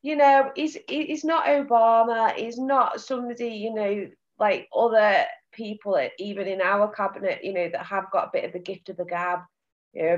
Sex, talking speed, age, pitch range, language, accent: female, 200 wpm, 30-49, 175-220 Hz, English, British